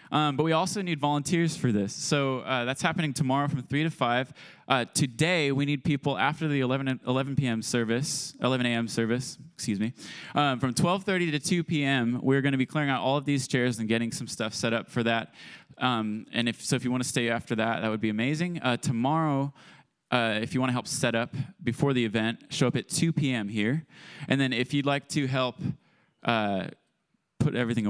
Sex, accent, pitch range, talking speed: male, American, 120-160 Hz, 220 wpm